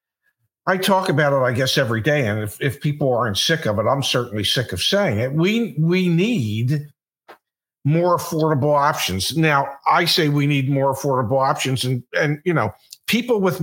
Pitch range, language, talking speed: 135-195 Hz, English, 185 wpm